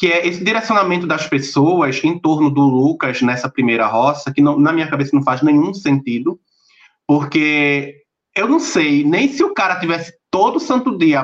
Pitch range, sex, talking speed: 150-205 Hz, male, 180 wpm